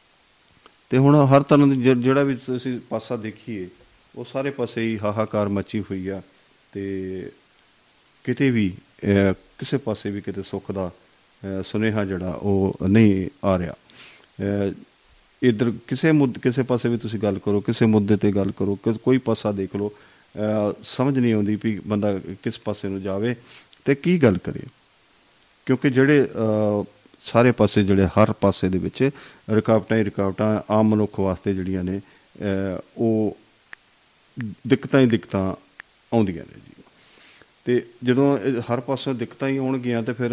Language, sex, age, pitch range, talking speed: Punjabi, male, 40-59, 100-130 Hz, 145 wpm